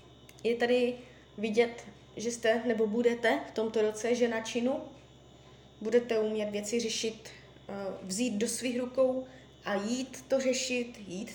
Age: 20-39